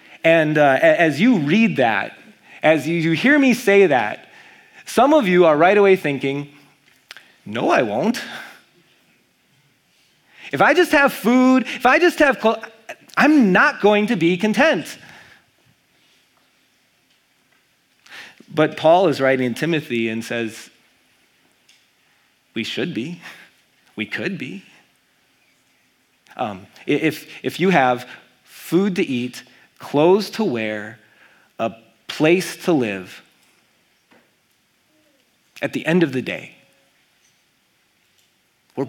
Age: 30-49